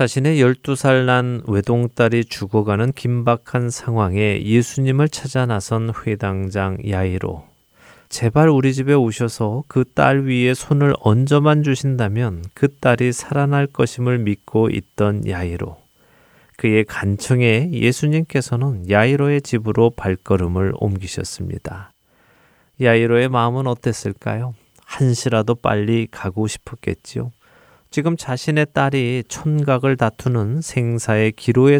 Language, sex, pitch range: Korean, male, 105-135 Hz